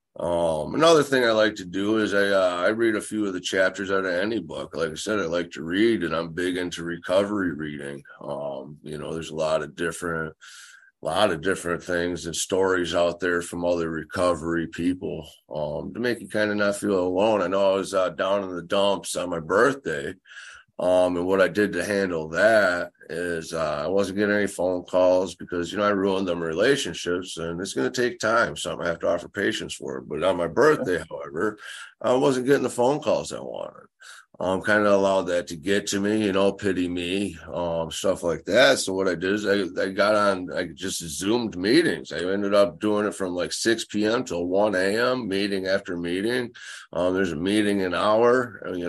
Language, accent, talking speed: English, American, 220 wpm